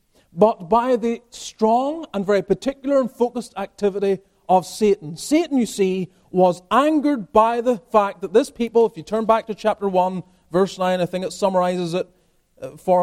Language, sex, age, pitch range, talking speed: English, male, 30-49, 185-240 Hz, 175 wpm